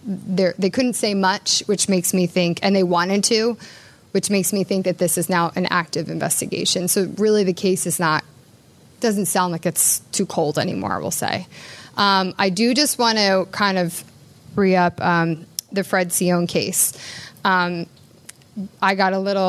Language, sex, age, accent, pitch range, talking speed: English, female, 20-39, American, 175-200 Hz, 170 wpm